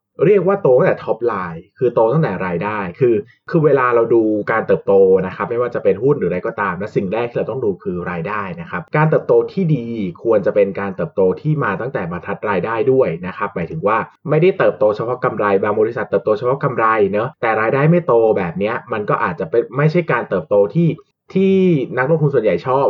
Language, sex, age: Thai, male, 20-39